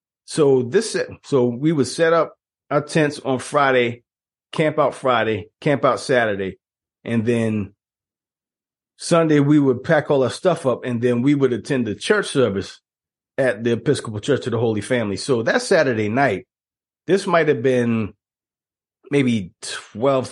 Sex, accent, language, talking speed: male, American, English, 155 wpm